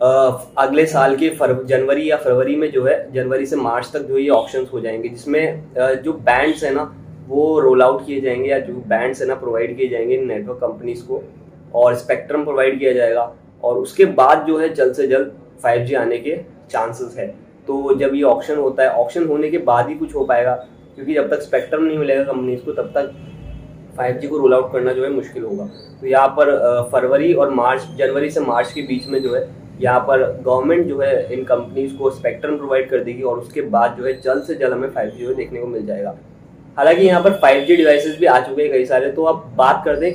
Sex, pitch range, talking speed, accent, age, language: male, 130-165 Hz, 220 wpm, native, 20-39, Hindi